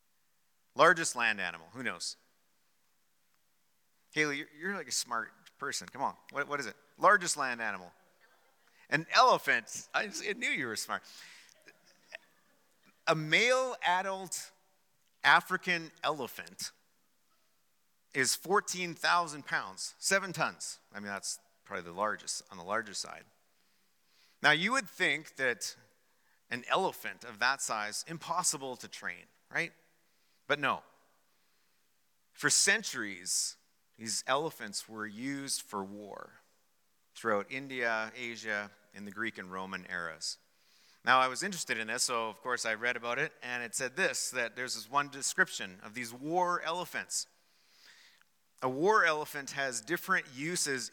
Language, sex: English, male